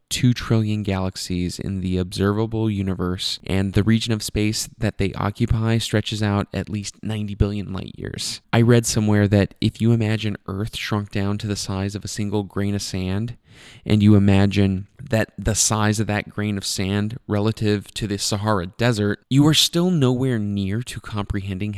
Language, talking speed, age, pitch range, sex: English, 180 wpm, 20-39, 95-110 Hz, male